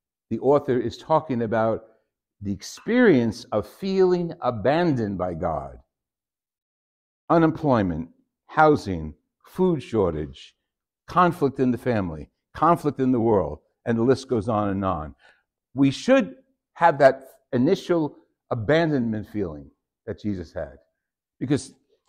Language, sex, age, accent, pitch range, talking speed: English, male, 60-79, American, 105-155 Hz, 115 wpm